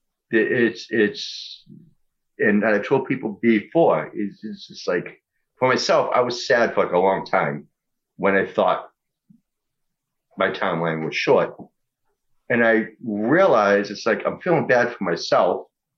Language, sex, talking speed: English, male, 145 wpm